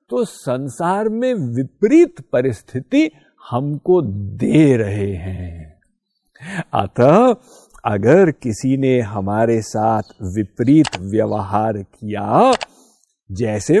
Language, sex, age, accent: Hindi, male, 50-69, native